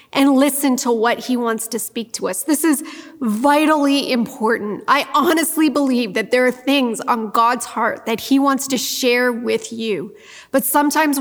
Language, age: English, 30-49